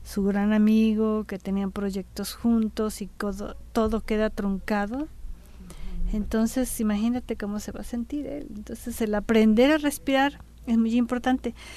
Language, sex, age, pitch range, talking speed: Spanish, female, 40-59, 185-235 Hz, 150 wpm